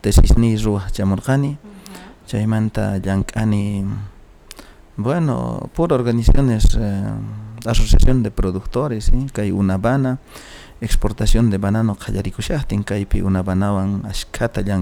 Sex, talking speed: male, 90 wpm